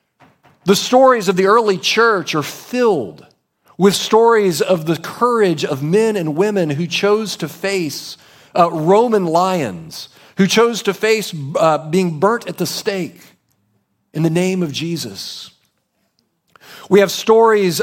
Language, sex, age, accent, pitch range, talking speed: English, male, 40-59, American, 150-200 Hz, 140 wpm